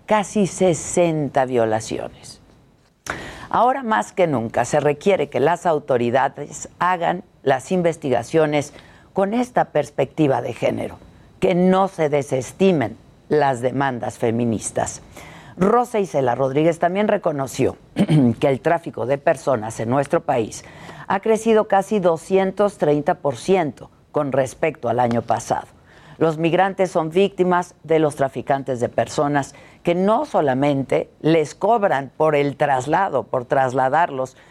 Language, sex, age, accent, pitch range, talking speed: Spanish, female, 50-69, Mexican, 130-175 Hz, 120 wpm